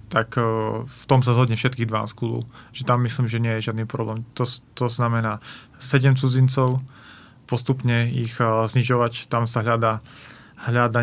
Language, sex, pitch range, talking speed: Slovak, male, 115-130 Hz, 150 wpm